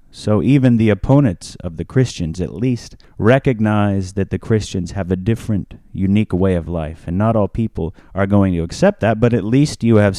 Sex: male